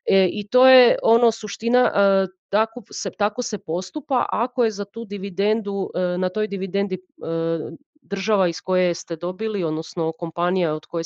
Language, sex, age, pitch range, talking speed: Croatian, female, 30-49, 160-200 Hz, 145 wpm